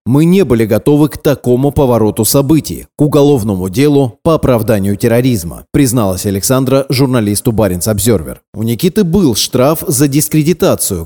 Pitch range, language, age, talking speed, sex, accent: 115-145 Hz, Russian, 30-49, 130 wpm, male, native